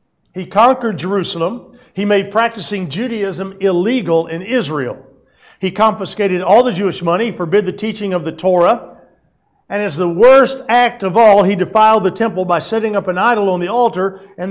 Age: 50-69